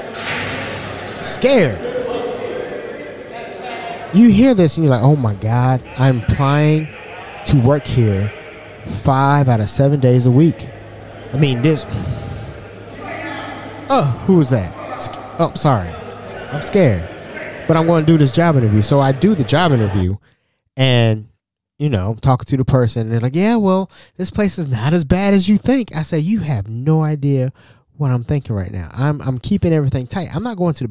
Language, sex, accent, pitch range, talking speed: English, male, American, 115-155 Hz, 170 wpm